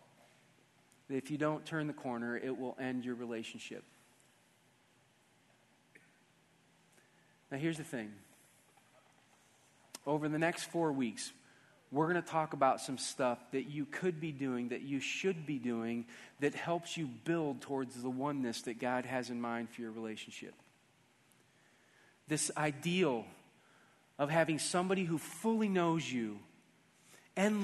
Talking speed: 135 wpm